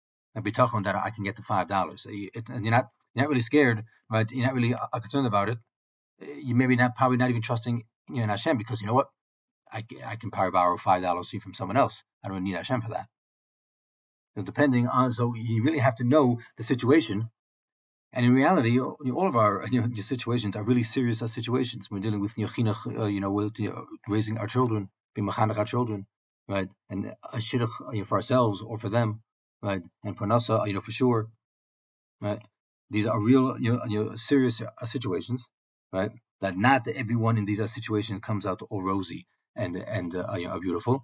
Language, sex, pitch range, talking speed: English, male, 100-125 Hz, 195 wpm